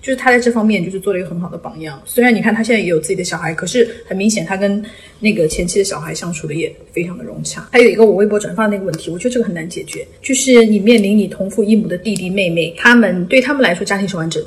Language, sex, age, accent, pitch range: Chinese, female, 20-39, native, 185-235 Hz